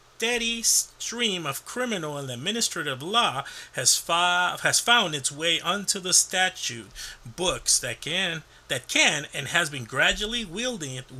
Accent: American